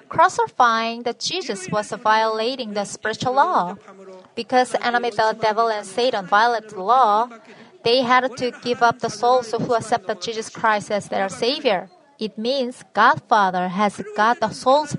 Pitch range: 200-245 Hz